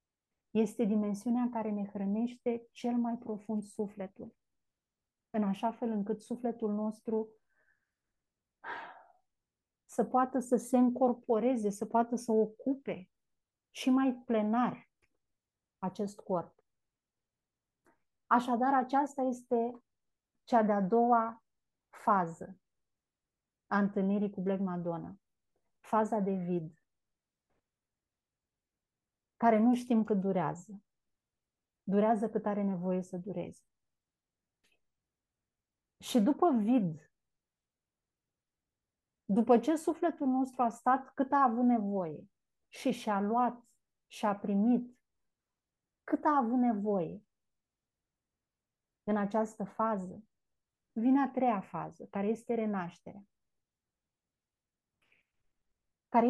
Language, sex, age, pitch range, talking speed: Romanian, female, 30-49, 205-245 Hz, 95 wpm